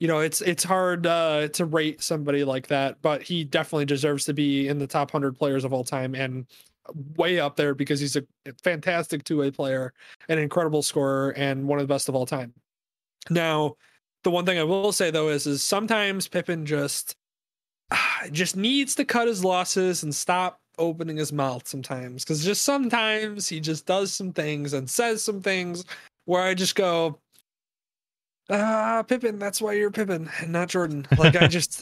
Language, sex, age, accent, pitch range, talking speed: English, male, 20-39, American, 145-185 Hz, 190 wpm